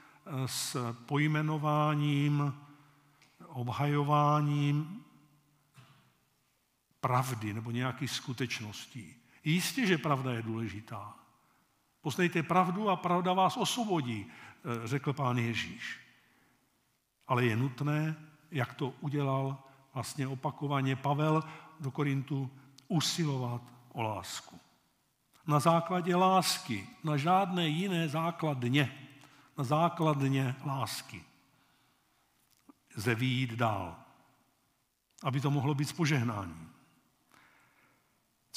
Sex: male